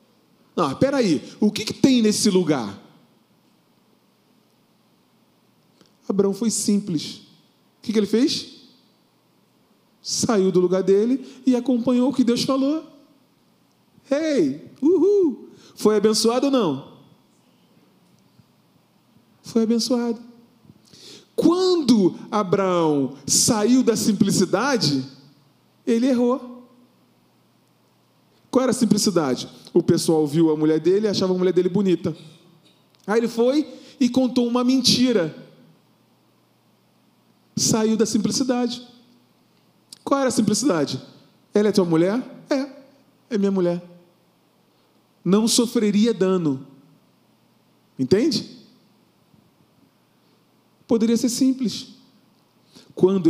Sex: male